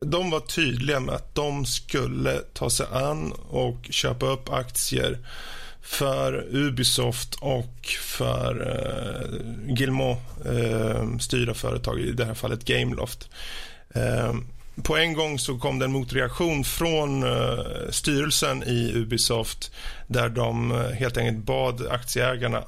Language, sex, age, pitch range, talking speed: Swedish, male, 30-49, 120-145 Hz, 125 wpm